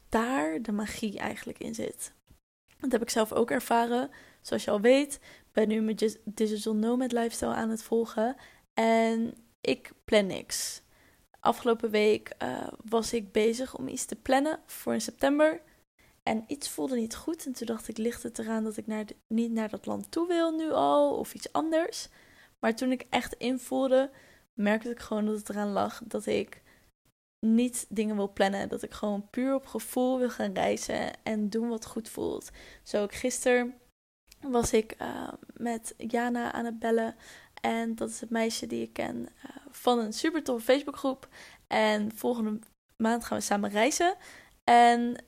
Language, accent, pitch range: Dutch, Dutch, 215-250 Hz